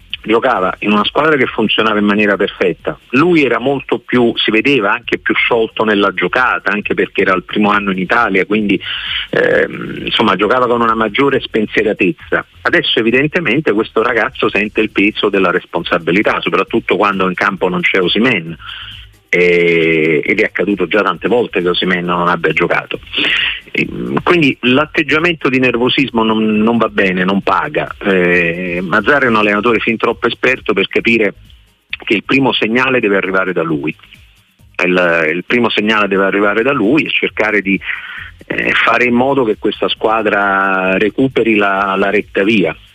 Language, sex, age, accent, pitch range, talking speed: Italian, male, 40-59, native, 95-115 Hz, 155 wpm